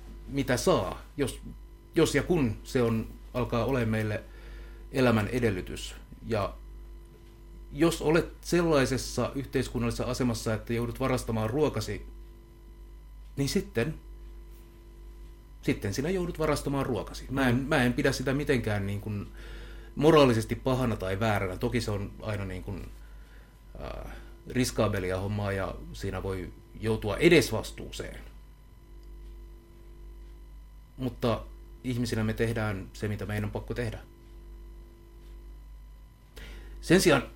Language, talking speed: Finnish, 110 wpm